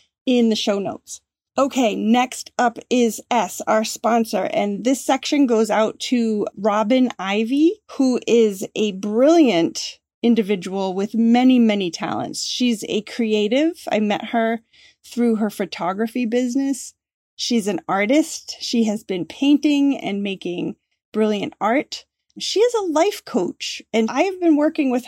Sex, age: female, 30-49